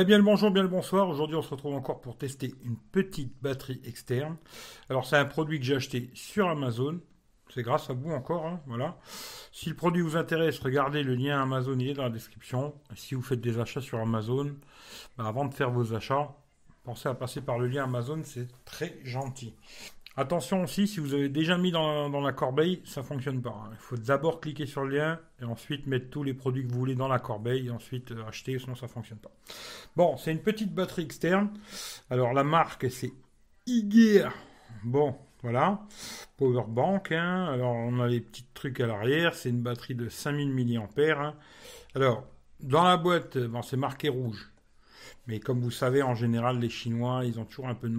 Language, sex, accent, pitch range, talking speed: French, male, French, 120-155 Hz, 210 wpm